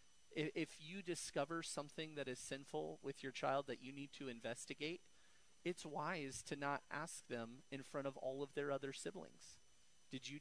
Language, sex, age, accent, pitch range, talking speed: English, male, 40-59, American, 130-180 Hz, 180 wpm